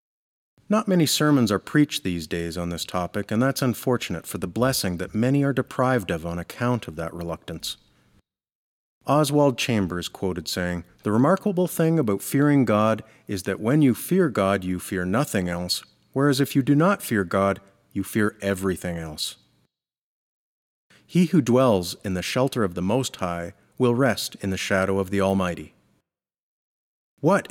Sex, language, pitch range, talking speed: male, English, 95-135 Hz, 165 wpm